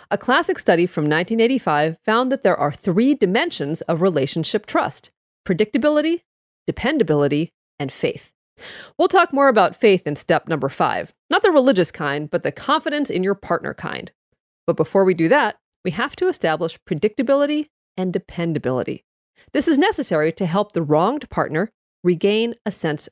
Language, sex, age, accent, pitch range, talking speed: English, female, 40-59, American, 165-265 Hz, 160 wpm